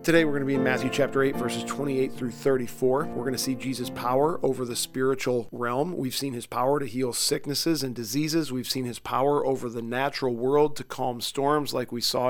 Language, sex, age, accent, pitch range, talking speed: English, male, 40-59, American, 120-140 Hz, 225 wpm